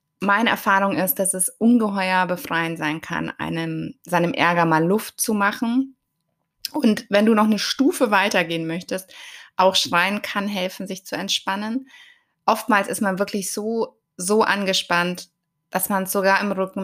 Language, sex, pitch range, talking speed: German, female, 165-200 Hz, 155 wpm